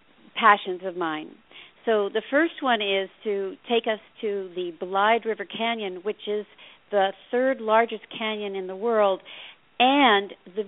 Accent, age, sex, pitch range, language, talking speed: American, 50-69, female, 185-220 Hz, English, 150 wpm